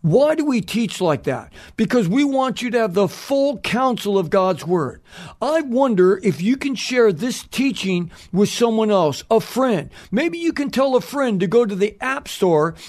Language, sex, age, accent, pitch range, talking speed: English, male, 50-69, American, 185-265 Hz, 200 wpm